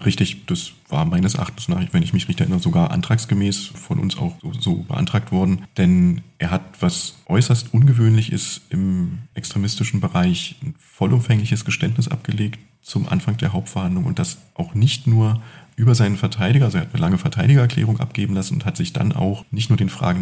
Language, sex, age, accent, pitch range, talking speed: German, male, 40-59, German, 100-160 Hz, 180 wpm